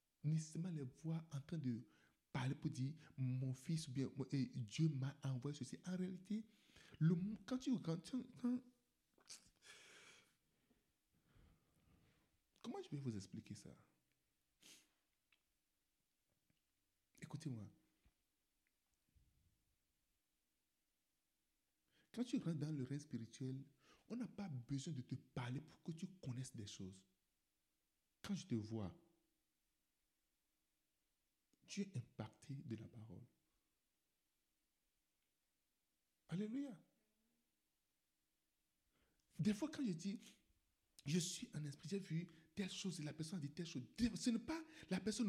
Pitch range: 130-205 Hz